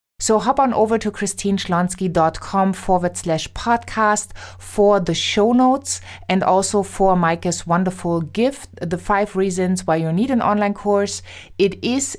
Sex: female